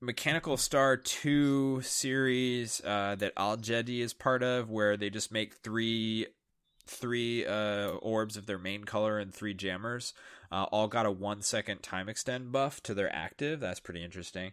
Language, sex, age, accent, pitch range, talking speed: English, male, 20-39, American, 100-130 Hz, 170 wpm